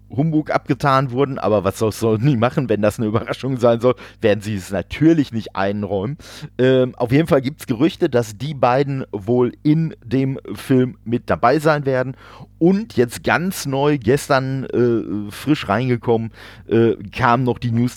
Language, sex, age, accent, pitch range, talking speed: German, male, 40-59, German, 110-135 Hz, 175 wpm